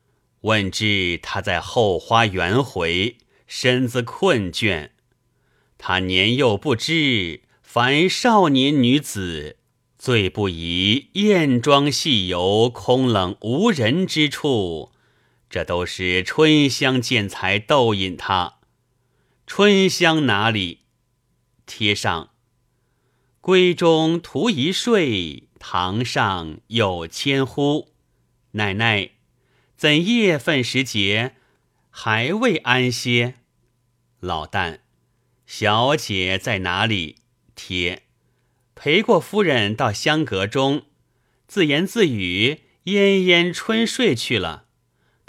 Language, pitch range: Chinese, 100-140 Hz